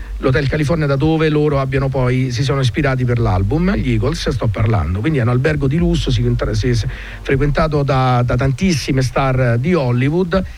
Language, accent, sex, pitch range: Italian, native, male, 125-170 Hz